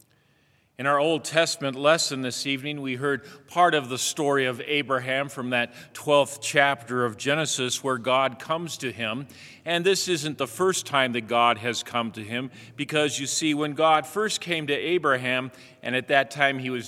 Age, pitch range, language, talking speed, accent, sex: 40-59, 125-150 Hz, English, 190 wpm, American, male